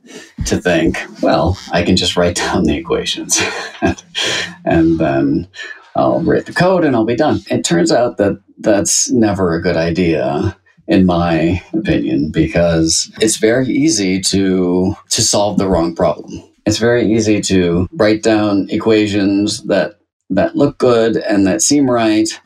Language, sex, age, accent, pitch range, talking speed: English, male, 30-49, American, 90-110 Hz, 150 wpm